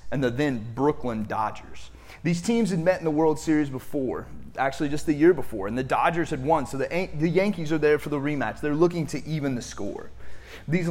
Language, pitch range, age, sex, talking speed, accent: English, 115-160 Hz, 30-49, male, 225 wpm, American